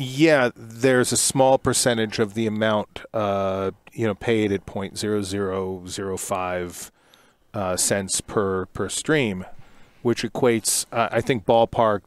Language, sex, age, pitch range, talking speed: English, male, 40-59, 105-125 Hz, 125 wpm